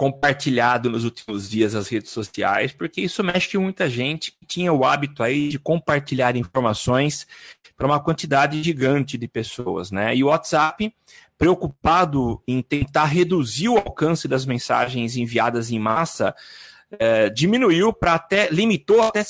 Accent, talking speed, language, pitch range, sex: Brazilian, 145 wpm, Portuguese, 120-175 Hz, male